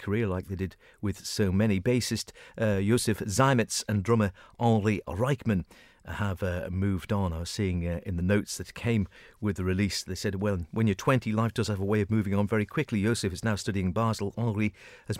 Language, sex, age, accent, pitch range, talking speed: English, male, 50-69, British, 95-115 Hz, 215 wpm